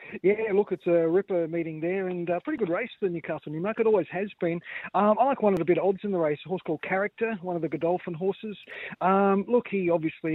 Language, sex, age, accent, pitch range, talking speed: English, male, 40-59, Australian, 155-185 Hz, 260 wpm